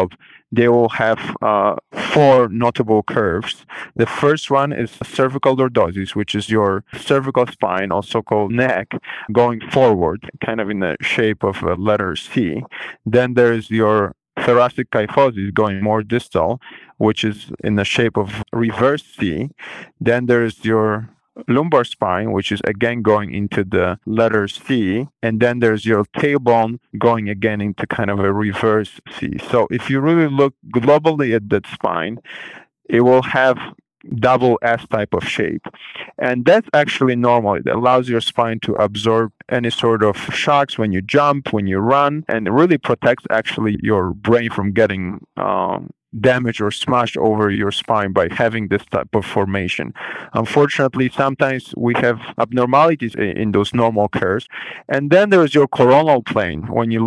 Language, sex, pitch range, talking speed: English, male, 105-125 Hz, 160 wpm